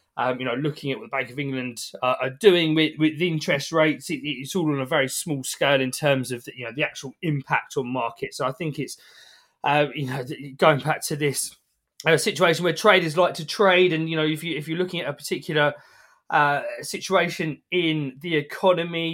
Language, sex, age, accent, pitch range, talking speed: English, male, 20-39, British, 135-180 Hz, 220 wpm